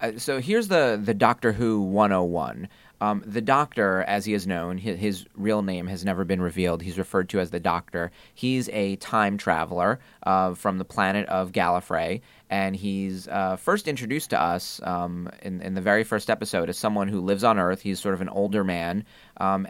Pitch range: 95-110 Hz